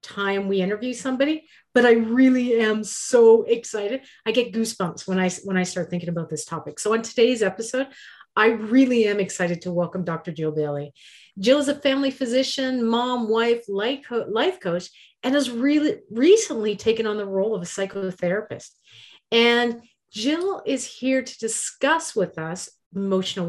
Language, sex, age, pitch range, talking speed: English, female, 40-59, 195-260 Hz, 165 wpm